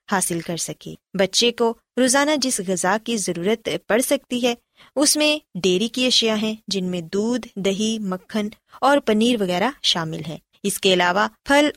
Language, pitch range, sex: Urdu, 190-265 Hz, female